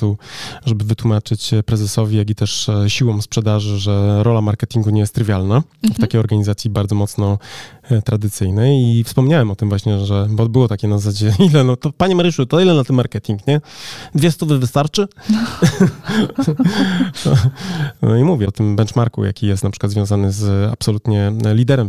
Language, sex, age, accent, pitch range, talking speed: Polish, male, 20-39, native, 105-135 Hz, 160 wpm